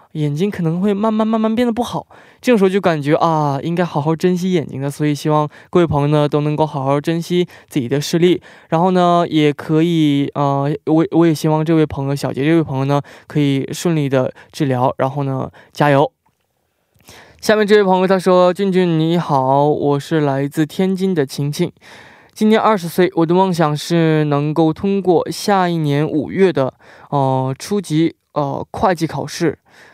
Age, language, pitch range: 20-39, Korean, 145-180 Hz